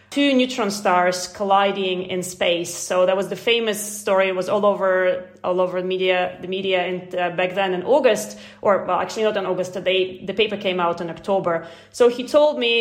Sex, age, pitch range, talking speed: female, 30-49, 185-220 Hz, 210 wpm